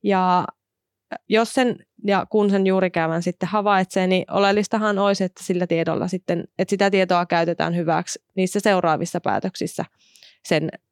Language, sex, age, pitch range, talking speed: Finnish, female, 30-49, 180-210 Hz, 130 wpm